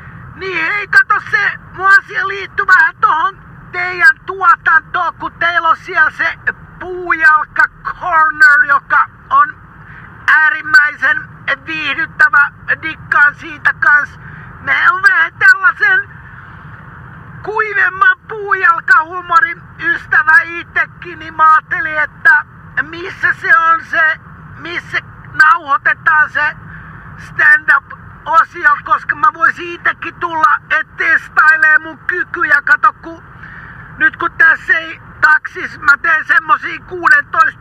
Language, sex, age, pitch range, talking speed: Finnish, male, 50-69, 310-390 Hz, 105 wpm